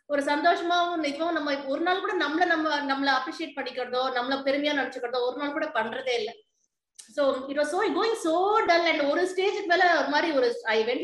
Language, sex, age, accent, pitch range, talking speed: Tamil, female, 20-39, native, 245-320 Hz, 150 wpm